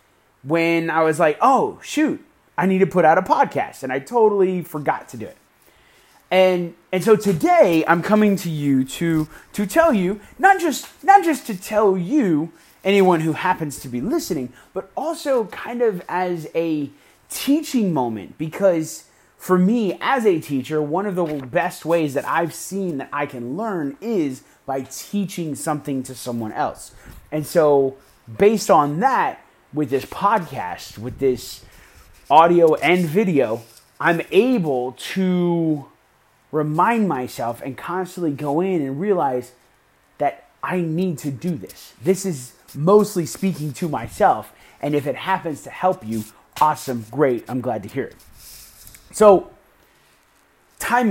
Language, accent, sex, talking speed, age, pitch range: English, American, male, 155 wpm, 30-49, 140-200 Hz